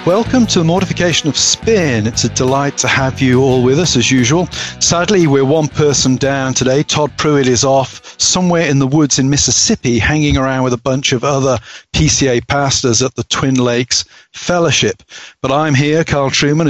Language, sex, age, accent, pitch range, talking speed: English, male, 40-59, British, 130-155 Hz, 185 wpm